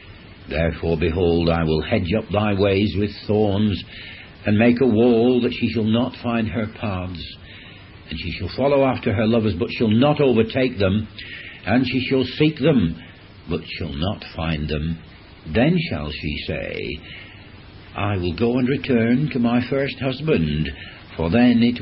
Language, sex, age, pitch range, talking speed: English, male, 60-79, 85-120 Hz, 160 wpm